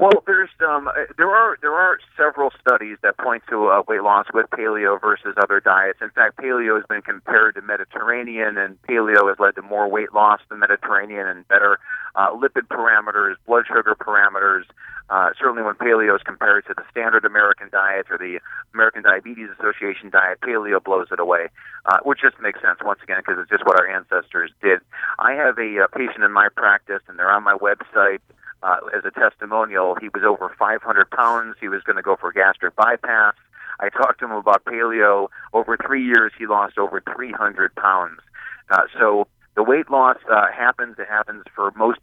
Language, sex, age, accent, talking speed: English, male, 30-49, American, 195 wpm